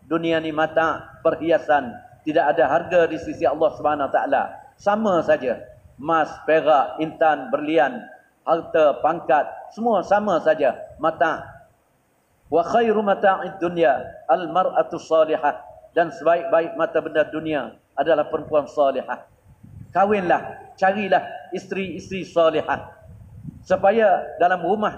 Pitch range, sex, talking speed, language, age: 160-175 Hz, male, 110 wpm, Malay, 50-69